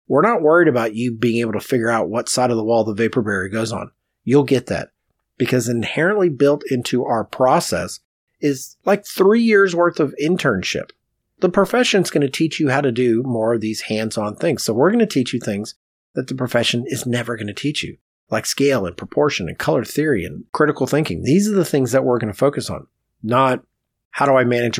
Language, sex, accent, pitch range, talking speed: English, male, American, 110-140 Hz, 220 wpm